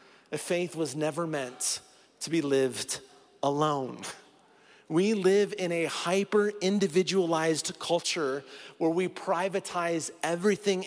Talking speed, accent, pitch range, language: 100 wpm, American, 155-185 Hz, English